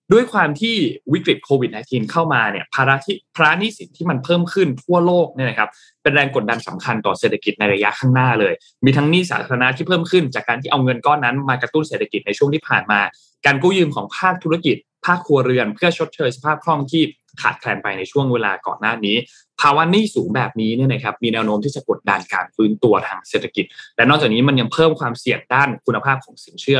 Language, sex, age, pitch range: Thai, male, 20-39, 120-160 Hz